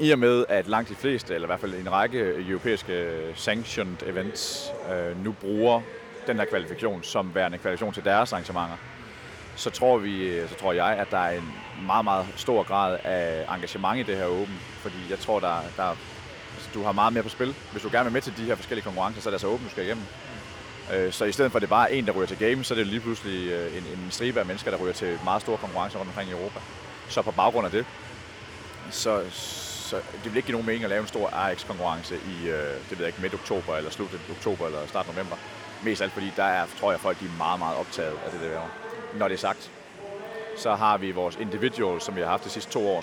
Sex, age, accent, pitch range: male, 30-49, native, 90-115 Hz